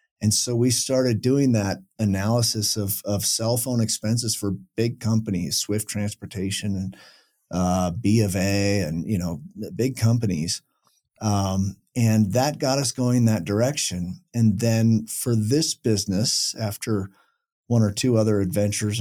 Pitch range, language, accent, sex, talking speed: 100-115 Hz, English, American, male, 145 wpm